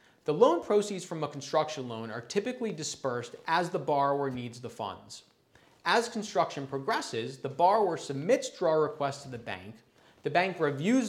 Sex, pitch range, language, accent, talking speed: male, 130-180 Hz, English, American, 160 wpm